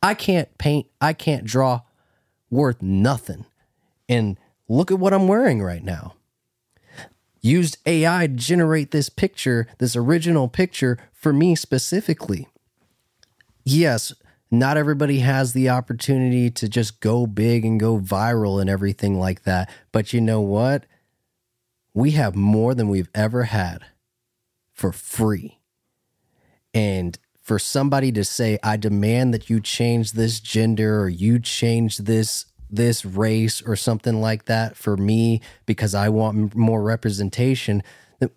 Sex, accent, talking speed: male, American, 140 wpm